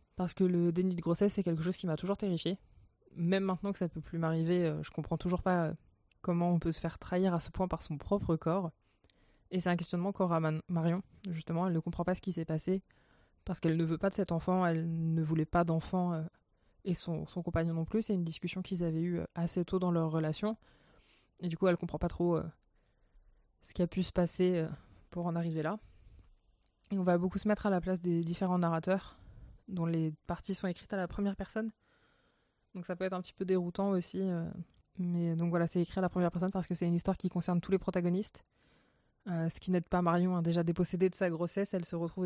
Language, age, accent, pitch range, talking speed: French, 20-39, French, 165-185 Hz, 235 wpm